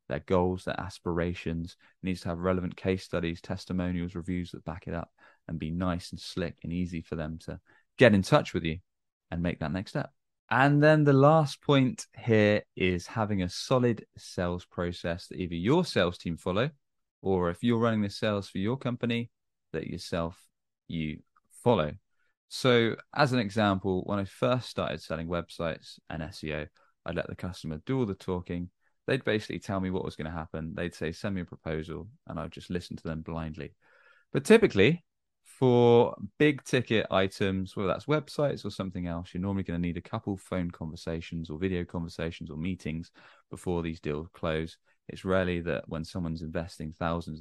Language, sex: English, male